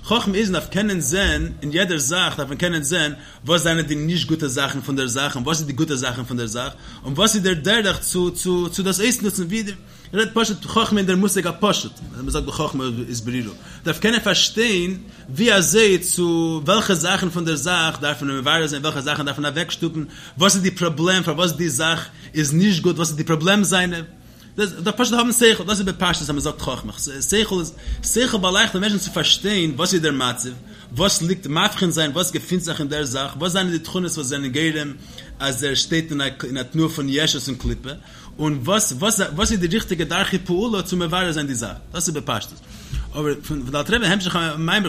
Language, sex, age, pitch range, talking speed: English, male, 30-49, 145-190 Hz, 185 wpm